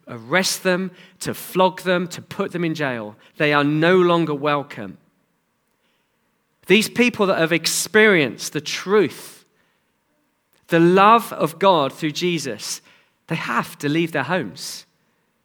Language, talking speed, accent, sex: English, 130 wpm, British, male